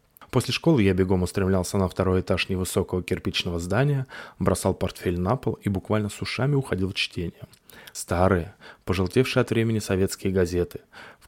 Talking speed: 155 wpm